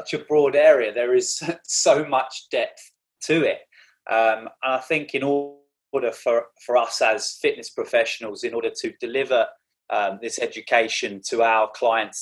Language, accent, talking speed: English, British, 155 wpm